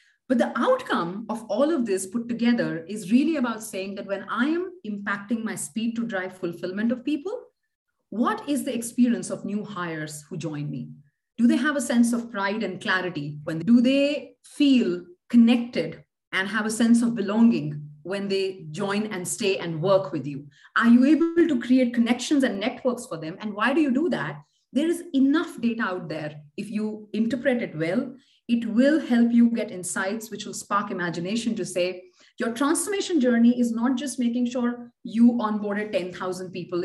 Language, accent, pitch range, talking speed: English, Indian, 185-255 Hz, 185 wpm